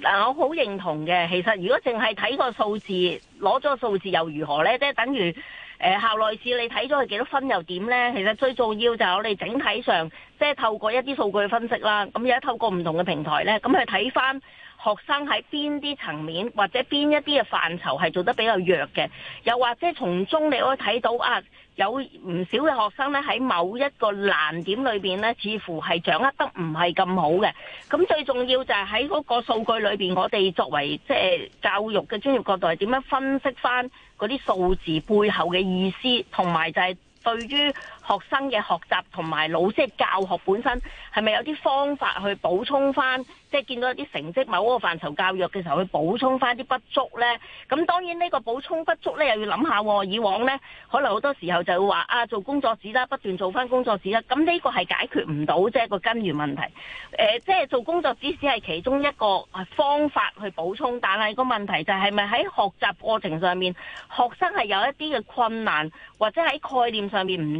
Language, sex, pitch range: Chinese, female, 185-270 Hz